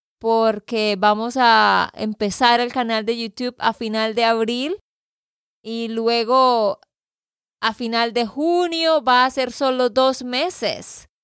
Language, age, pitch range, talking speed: Spanish, 20-39, 210-260 Hz, 130 wpm